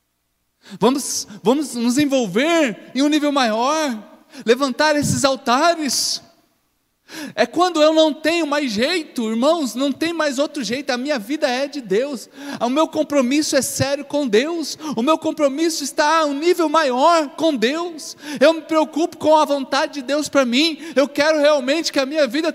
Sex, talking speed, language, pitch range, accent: male, 170 wpm, Portuguese, 275-315 Hz, Brazilian